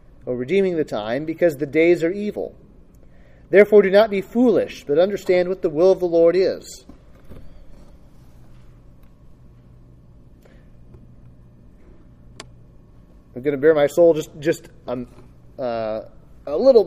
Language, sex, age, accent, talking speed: English, male, 30-49, American, 125 wpm